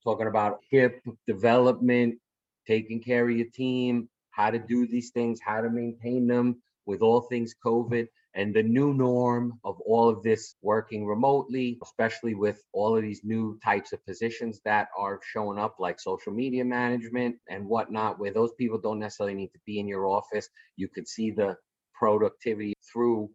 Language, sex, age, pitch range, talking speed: English, male, 30-49, 105-120 Hz, 175 wpm